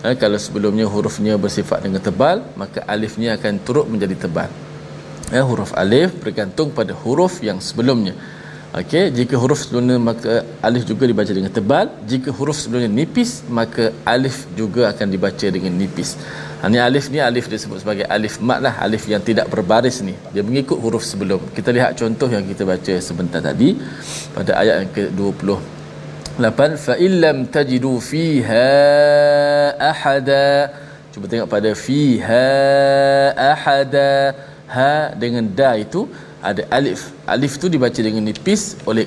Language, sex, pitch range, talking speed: Malayalam, male, 105-140 Hz, 145 wpm